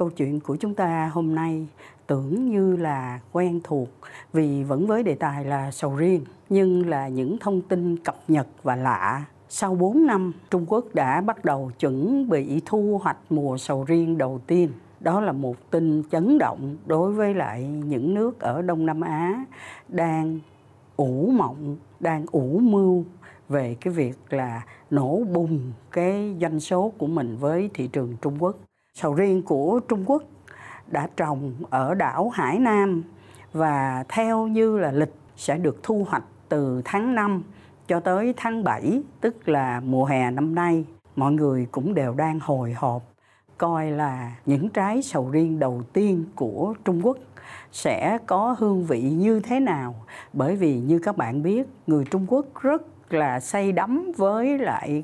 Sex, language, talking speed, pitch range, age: female, Vietnamese, 170 wpm, 140-195 Hz, 60-79